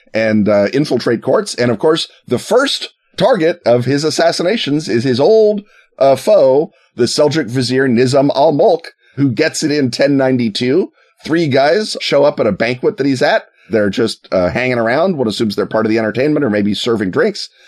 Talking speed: 185 wpm